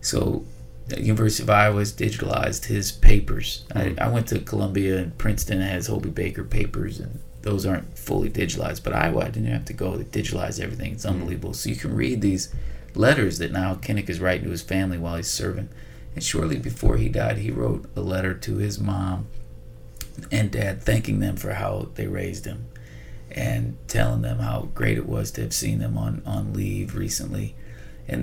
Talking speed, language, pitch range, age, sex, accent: 195 wpm, English, 95-115 Hz, 30-49, male, American